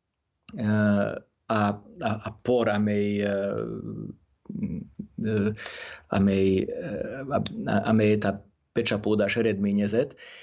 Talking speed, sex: 60 wpm, male